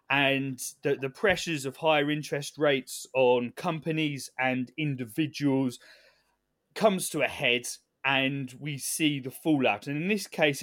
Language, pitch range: English, 135-165 Hz